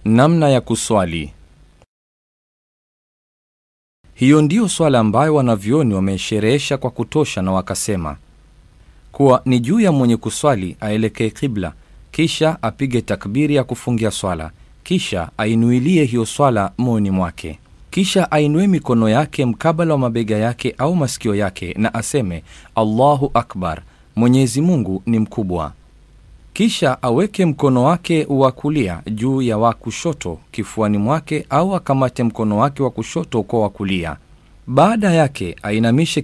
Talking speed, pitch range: 125 wpm, 105-145 Hz